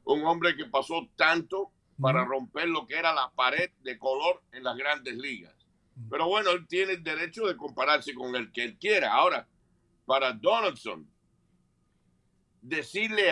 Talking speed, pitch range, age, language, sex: 160 wpm, 135-180 Hz, 60-79, English, male